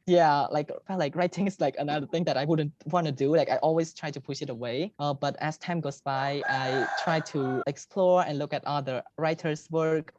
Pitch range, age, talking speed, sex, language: 130-160 Hz, 20-39, 225 wpm, male, English